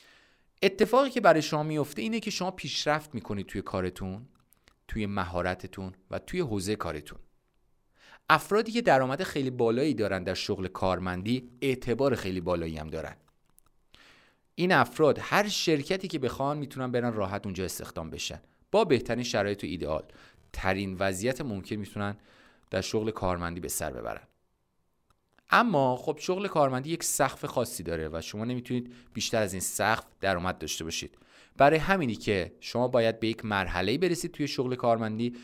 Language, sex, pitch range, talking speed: Persian, male, 100-145 Hz, 150 wpm